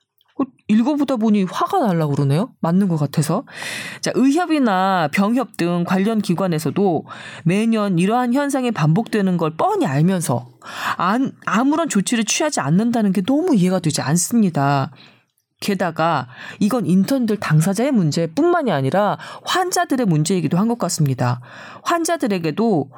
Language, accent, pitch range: Korean, native, 155-230 Hz